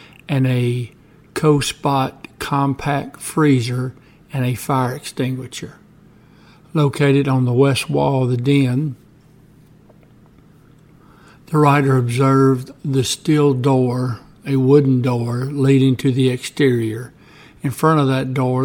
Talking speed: 115 wpm